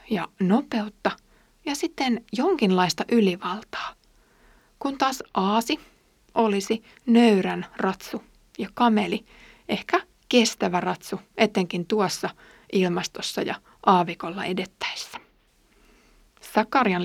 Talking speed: 85 wpm